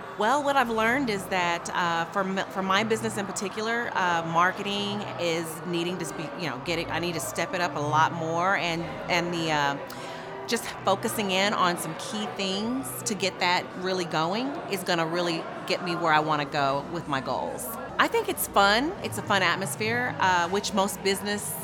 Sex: female